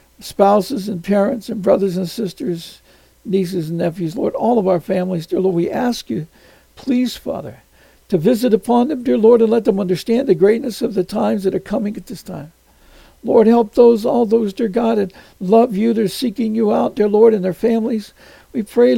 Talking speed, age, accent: 200 wpm, 60-79, American